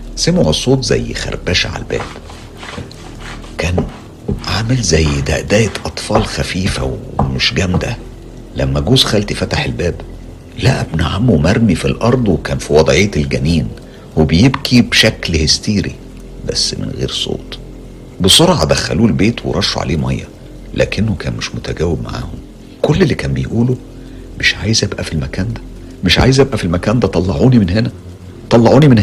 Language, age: Arabic, 60-79